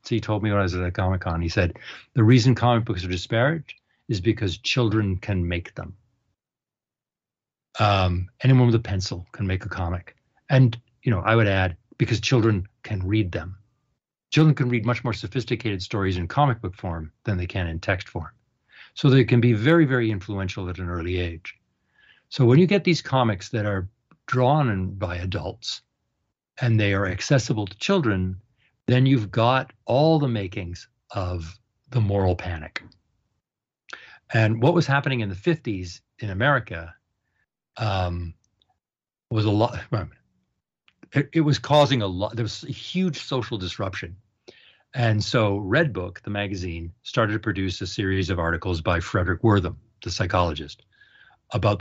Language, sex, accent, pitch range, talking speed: English, male, American, 95-125 Hz, 165 wpm